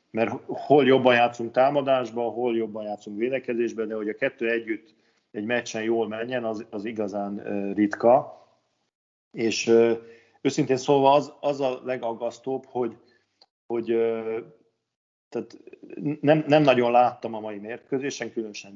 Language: Hungarian